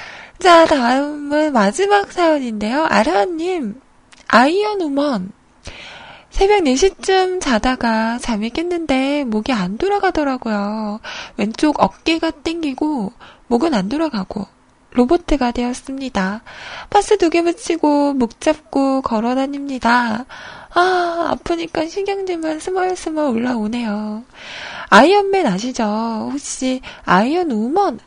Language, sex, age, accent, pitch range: Korean, female, 20-39, native, 240-335 Hz